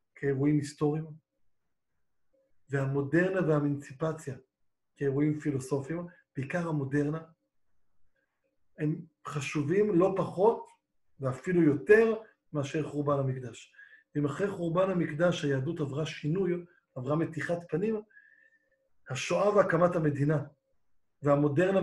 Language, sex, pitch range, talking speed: Hebrew, male, 145-185 Hz, 85 wpm